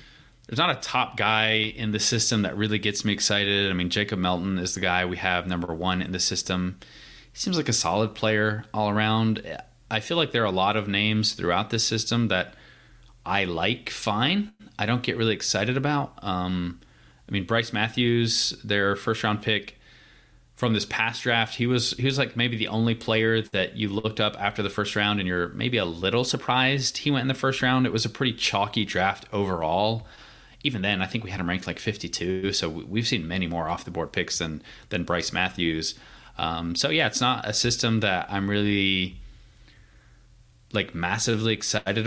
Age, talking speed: 20-39, 200 wpm